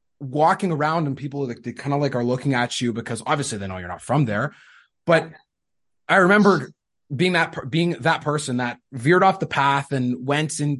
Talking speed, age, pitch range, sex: 200 wpm, 20-39, 135-170 Hz, male